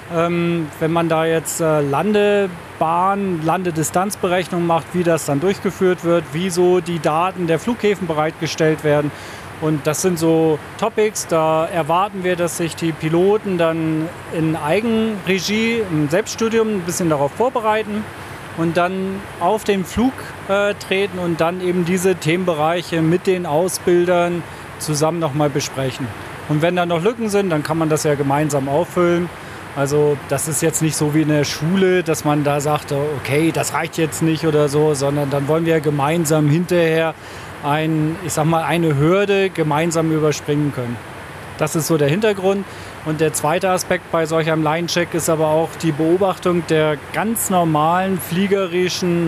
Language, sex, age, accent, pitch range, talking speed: German, male, 40-59, German, 155-180 Hz, 155 wpm